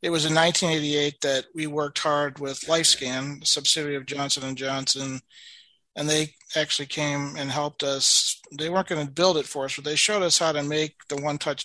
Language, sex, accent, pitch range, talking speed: English, male, American, 140-160 Hz, 210 wpm